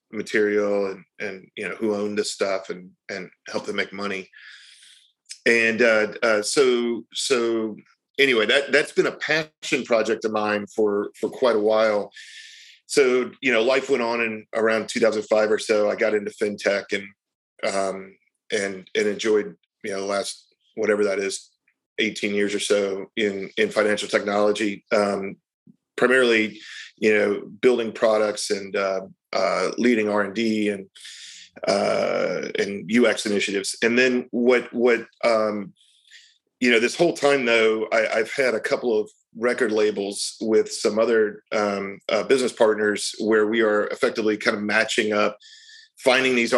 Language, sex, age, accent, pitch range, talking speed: English, male, 40-59, American, 105-125 Hz, 155 wpm